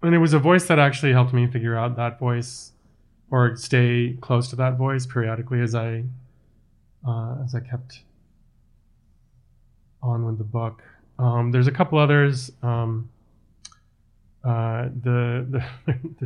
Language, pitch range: English, 110-125 Hz